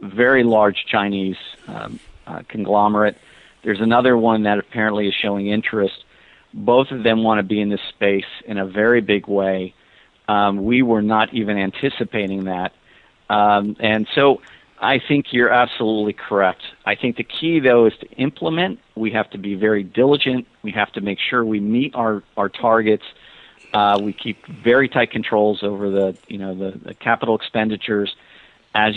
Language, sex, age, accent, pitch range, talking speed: English, male, 50-69, American, 100-115 Hz, 170 wpm